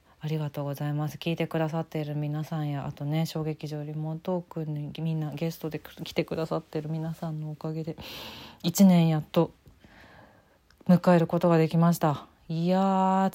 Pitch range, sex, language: 155-195 Hz, female, Japanese